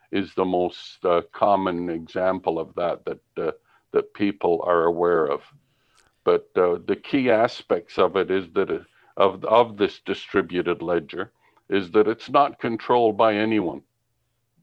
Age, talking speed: 60-79, 150 wpm